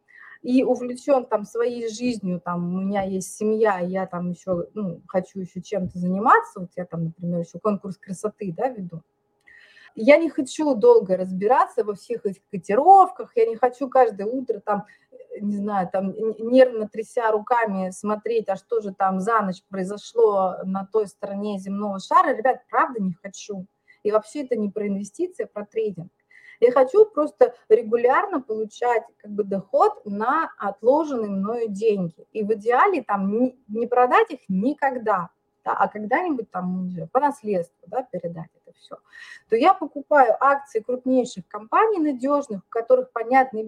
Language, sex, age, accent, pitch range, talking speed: Russian, female, 30-49, native, 200-275 Hz, 150 wpm